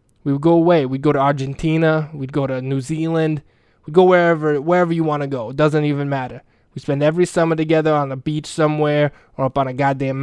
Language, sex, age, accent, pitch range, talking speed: English, male, 20-39, American, 135-155 Hz, 230 wpm